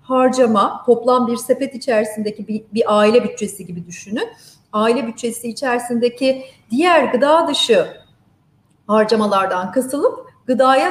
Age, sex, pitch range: 40-59, female, 215-275 Hz